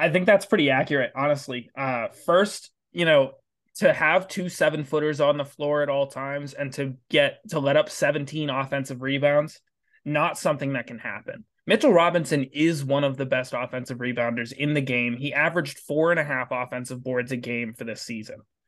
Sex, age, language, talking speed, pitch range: male, 20-39, English, 195 wpm, 130-165 Hz